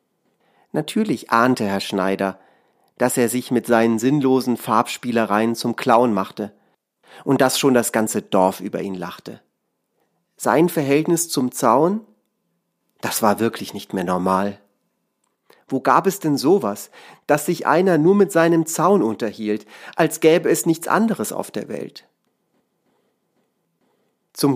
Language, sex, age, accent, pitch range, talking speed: German, male, 40-59, German, 105-160 Hz, 135 wpm